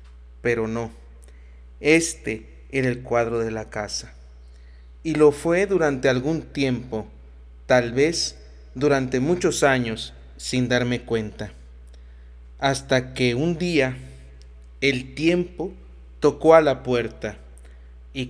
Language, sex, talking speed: Spanish, male, 110 wpm